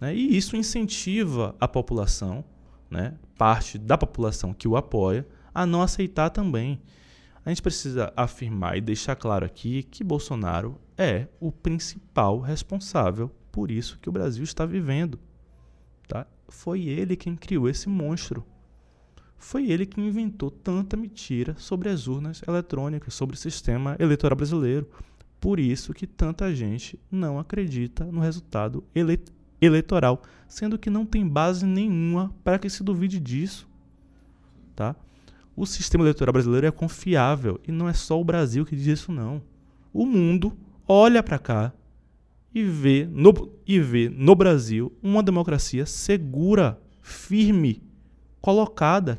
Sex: male